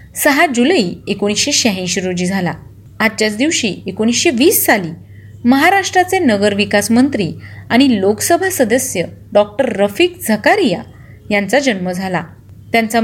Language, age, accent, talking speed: Marathi, 30-49, native, 110 wpm